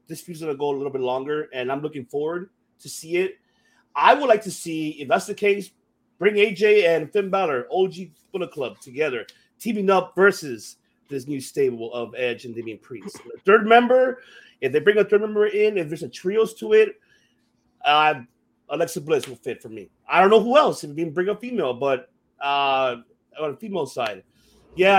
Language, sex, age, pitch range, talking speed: English, male, 30-49, 135-200 Hz, 200 wpm